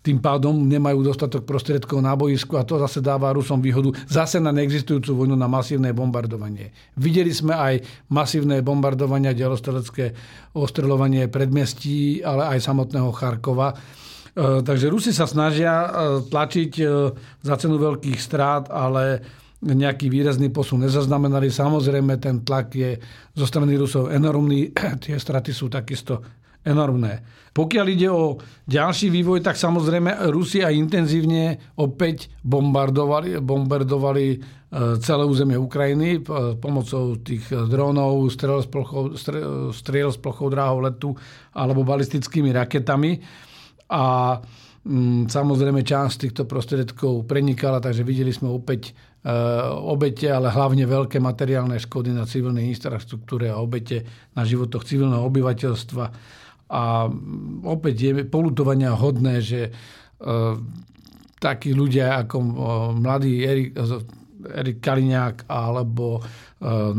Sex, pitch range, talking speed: male, 125-145 Hz, 115 wpm